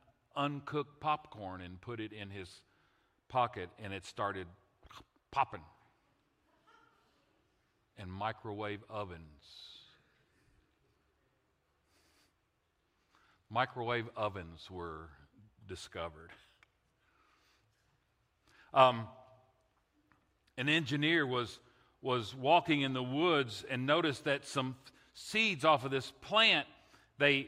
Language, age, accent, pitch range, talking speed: English, 50-69, American, 110-165 Hz, 85 wpm